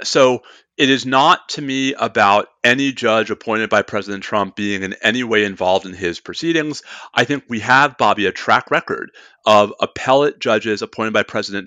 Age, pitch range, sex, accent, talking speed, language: 40-59, 105-150 Hz, male, American, 180 wpm, English